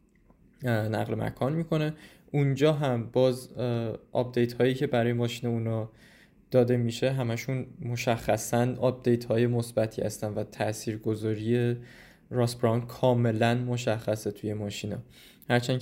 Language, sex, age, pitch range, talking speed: Persian, male, 20-39, 115-130 Hz, 110 wpm